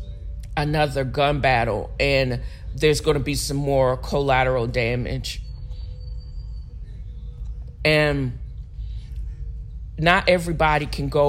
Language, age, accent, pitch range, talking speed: English, 40-59, American, 120-150 Hz, 85 wpm